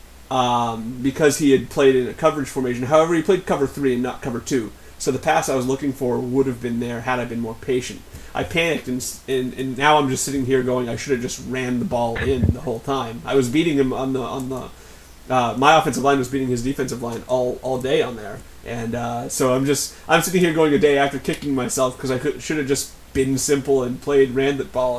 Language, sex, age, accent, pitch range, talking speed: English, male, 30-49, American, 120-140 Hz, 255 wpm